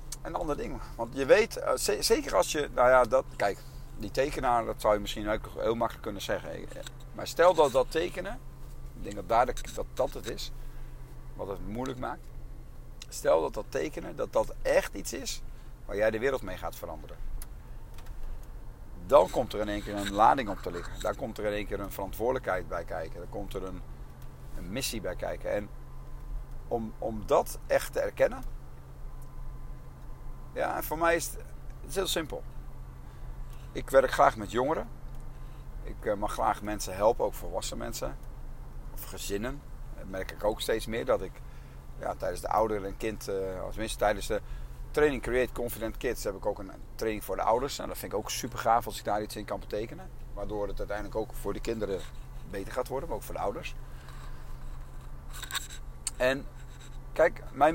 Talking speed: 180 wpm